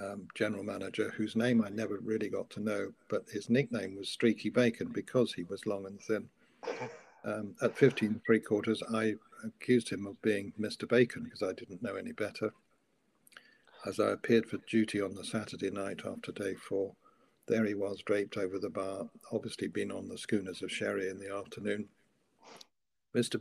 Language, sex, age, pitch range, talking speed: English, male, 60-79, 100-115 Hz, 180 wpm